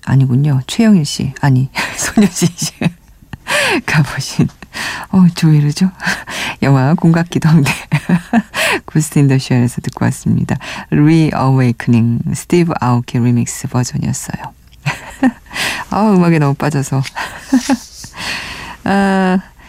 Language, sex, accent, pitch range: Korean, female, native, 130-185 Hz